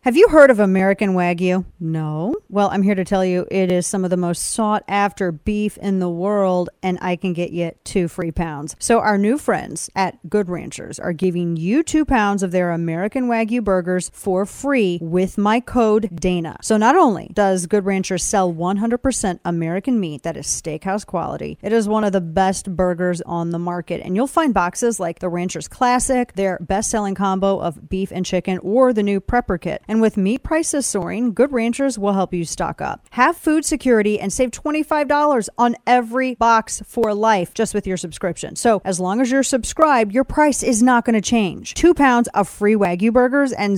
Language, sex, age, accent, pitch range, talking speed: English, female, 40-59, American, 180-240 Hz, 205 wpm